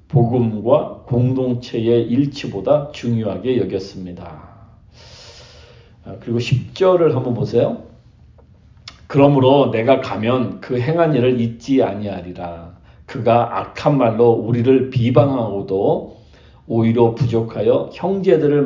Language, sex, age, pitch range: Korean, male, 40-59, 105-135 Hz